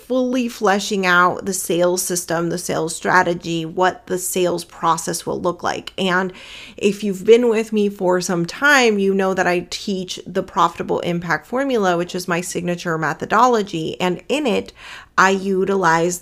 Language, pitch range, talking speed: English, 175-210 Hz, 165 wpm